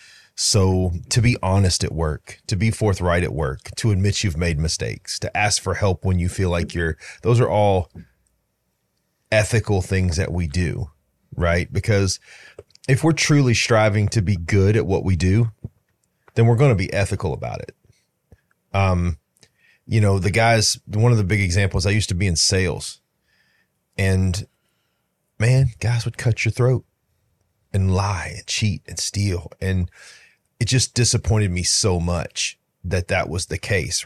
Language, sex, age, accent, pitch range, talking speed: English, male, 30-49, American, 95-110 Hz, 165 wpm